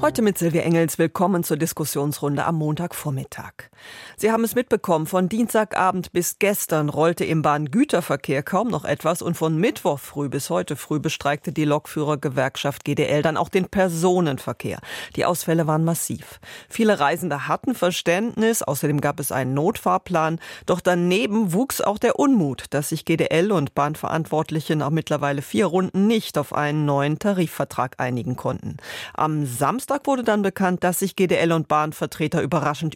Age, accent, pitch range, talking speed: 40-59, German, 150-185 Hz, 155 wpm